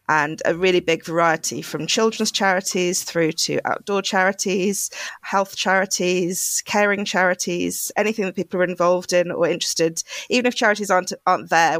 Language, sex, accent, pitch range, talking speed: English, female, British, 165-190 Hz, 155 wpm